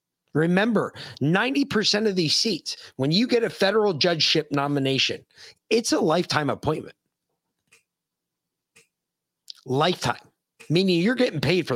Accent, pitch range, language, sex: American, 140-200 Hz, English, male